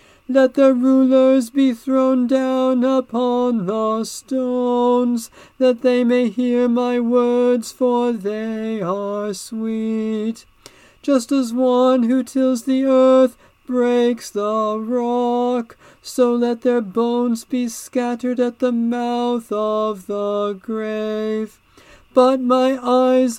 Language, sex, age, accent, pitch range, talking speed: English, male, 40-59, American, 220-255 Hz, 115 wpm